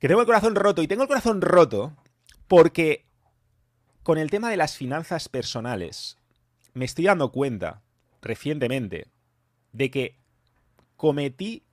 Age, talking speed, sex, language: 30-49, 135 wpm, male, English